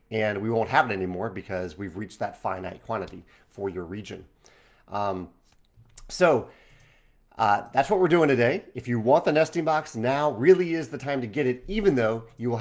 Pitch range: 105-135 Hz